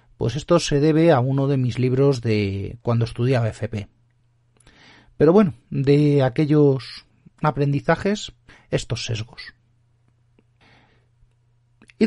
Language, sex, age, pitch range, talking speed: Spanish, male, 40-59, 115-155 Hz, 105 wpm